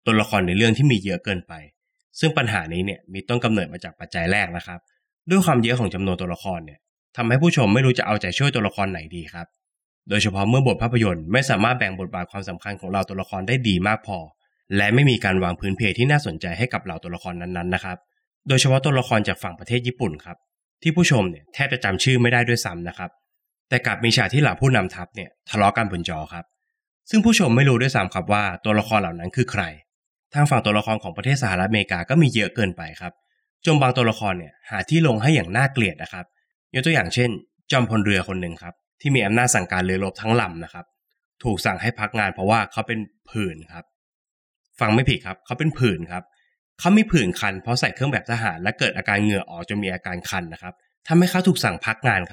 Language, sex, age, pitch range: Thai, male, 20-39, 95-125 Hz